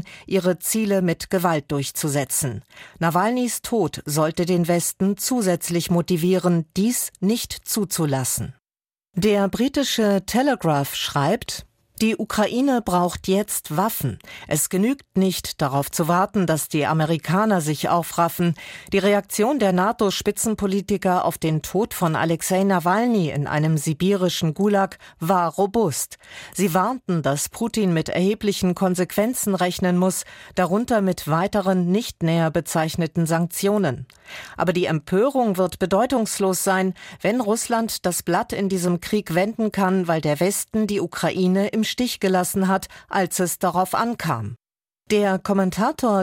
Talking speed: 125 wpm